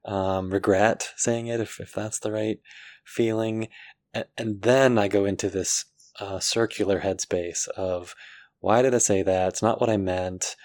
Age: 20-39